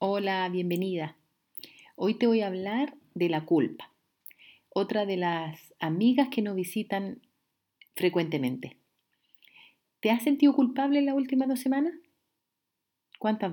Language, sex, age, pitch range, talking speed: Spanish, female, 40-59, 170-235 Hz, 125 wpm